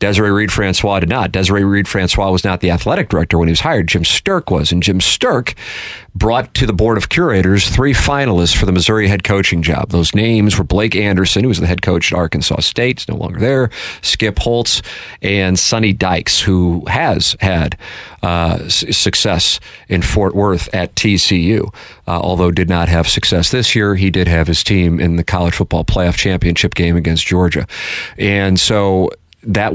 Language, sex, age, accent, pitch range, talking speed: English, male, 40-59, American, 85-100 Hz, 185 wpm